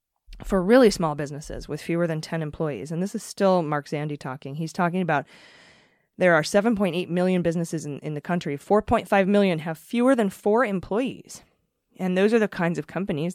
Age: 20-39